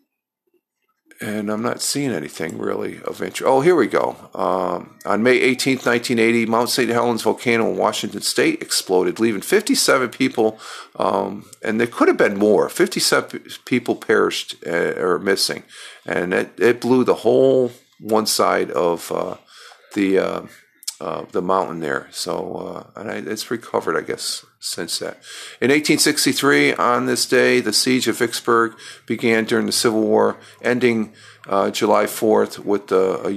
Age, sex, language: 50-69, male, English